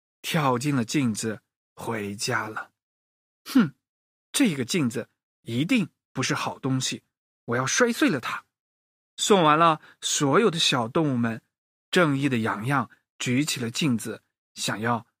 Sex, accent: male, native